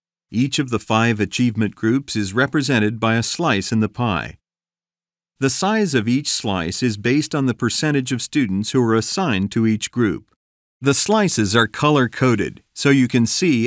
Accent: American